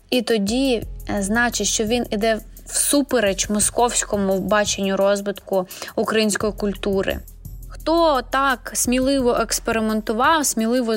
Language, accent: Ukrainian, native